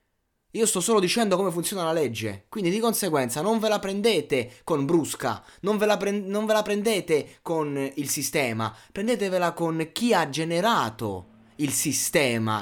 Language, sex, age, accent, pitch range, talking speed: Italian, male, 20-39, native, 130-205 Hz, 165 wpm